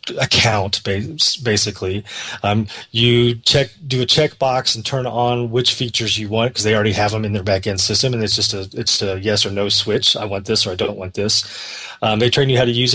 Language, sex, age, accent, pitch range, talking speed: English, male, 30-49, American, 105-125 Hz, 230 wpm